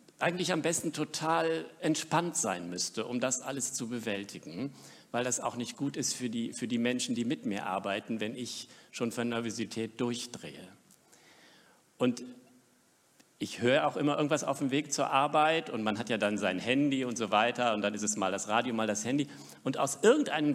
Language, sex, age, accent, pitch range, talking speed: German, male, 50-69, German, 115-160 Hz, 195 wpm